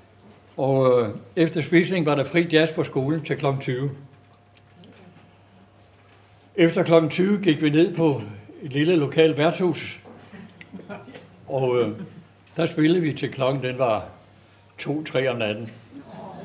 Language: Danish